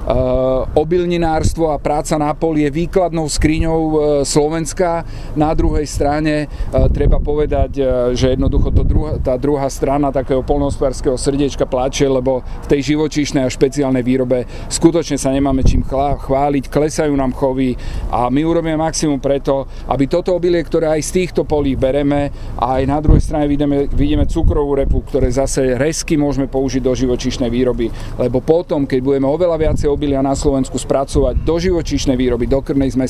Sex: male